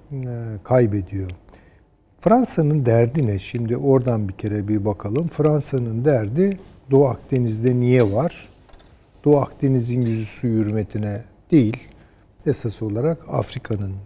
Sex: male